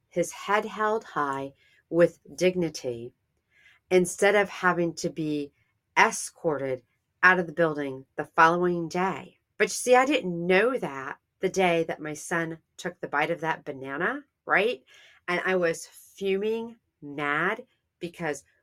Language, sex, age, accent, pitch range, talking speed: English, female, 40-59, American, 160-195 Hz, 140 wpm